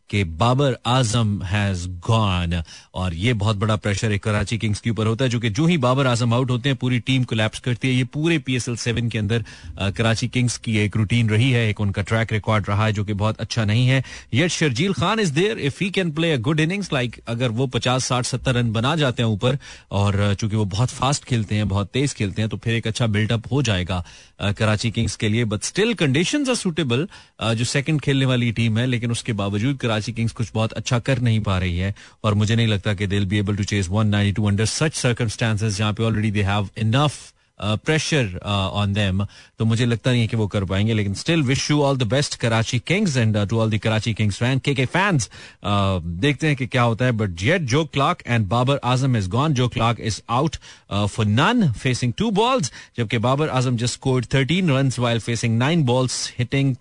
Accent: native